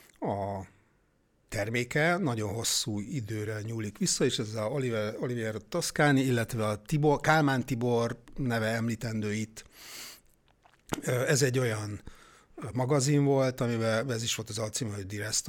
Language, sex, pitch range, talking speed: Hungarian, male, 105-145 Hz, 130 wpm